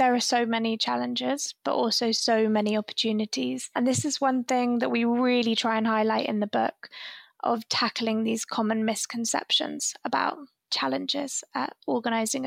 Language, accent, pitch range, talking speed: English, British, 215-245 Hz, 160 wpm